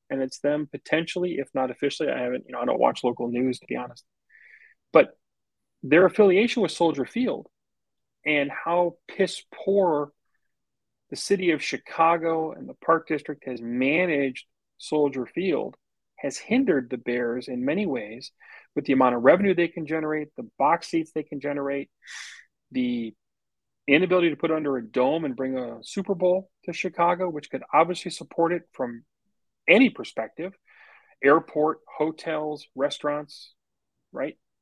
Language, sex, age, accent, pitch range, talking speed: English, male, 30-49, American, 130-170 Hz, 155 wpm